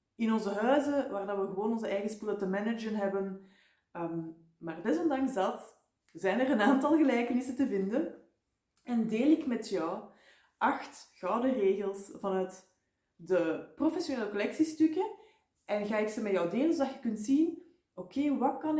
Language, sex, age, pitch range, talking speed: Dutch, female, 20-39, 195-270 Hz, 155 wpm